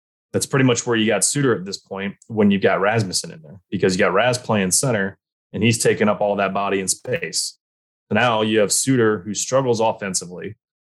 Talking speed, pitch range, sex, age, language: 215 wpm, 95-120 Hz, male, 20-39, English